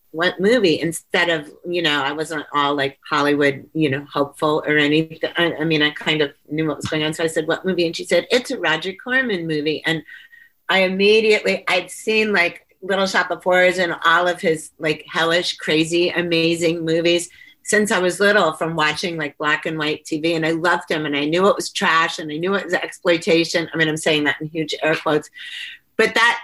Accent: American